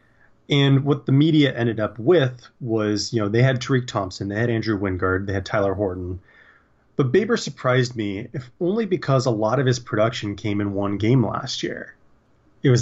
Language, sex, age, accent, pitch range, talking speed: English, male, 30-49, American, 100-125 Hz, 195 wpm